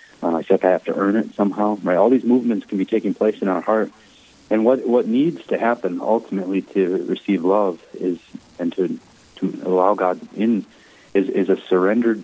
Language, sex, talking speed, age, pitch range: English, male, 195 wpm, 30-49, 95-115 Hz